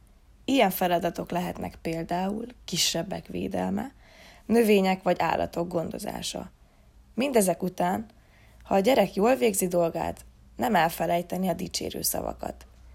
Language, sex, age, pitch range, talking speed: Hungarian, female, 20-39, 170-205 Hz, 105 wpm